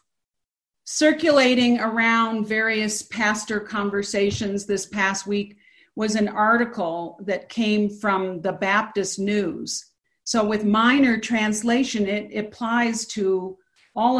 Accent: American